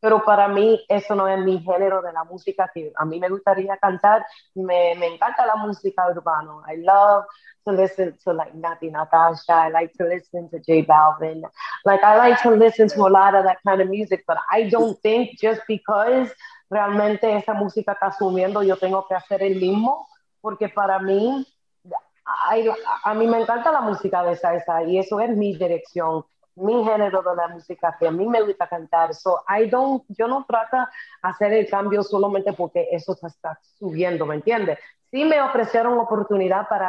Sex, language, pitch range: female, English, 180-215 Hz